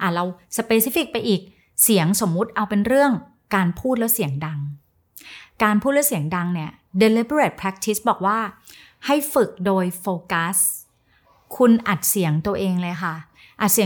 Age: 30-49